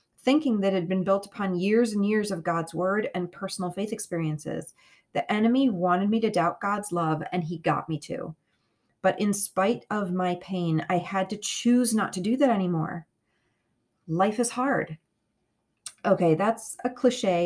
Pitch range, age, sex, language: 170-215 Hz, 30-49, female, English